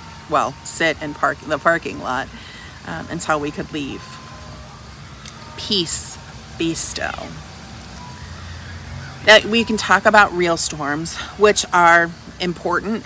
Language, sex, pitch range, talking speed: English, female, 145-190 Hz, 120 wpm